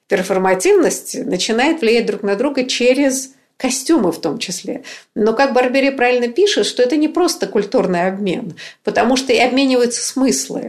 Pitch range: 185-245 Hz